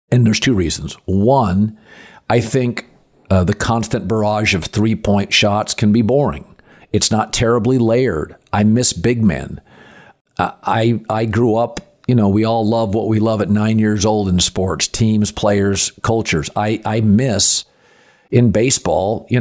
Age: 50-69